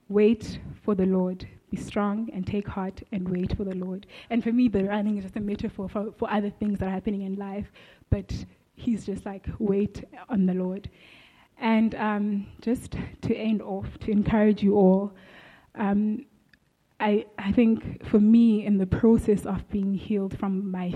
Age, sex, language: 20-39, female, English